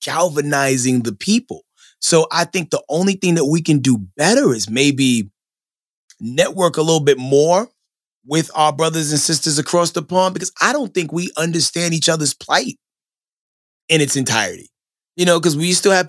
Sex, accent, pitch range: male, American, 135-170 Hz